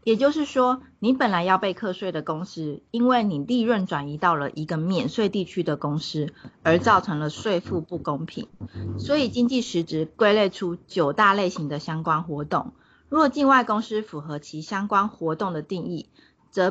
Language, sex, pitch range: Chinese, female, 160-220 Hz